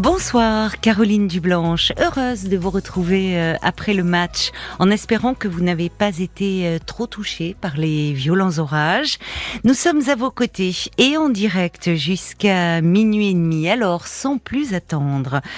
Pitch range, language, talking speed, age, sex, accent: 160-210 Hz, French, 150 wpm, 40-59, female, French